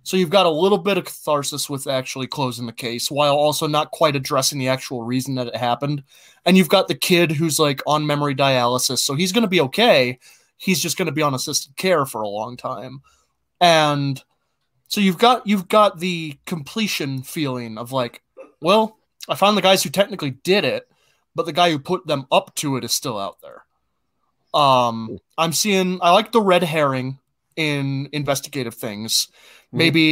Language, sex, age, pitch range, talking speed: English, male, 20-39, 130-175 Hz, 195 wpm